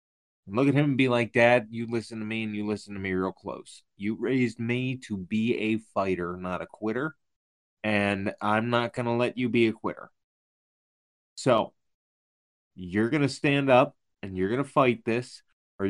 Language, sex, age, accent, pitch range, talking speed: English, male, 30-49, American, 100-140 Hz, 195 wpm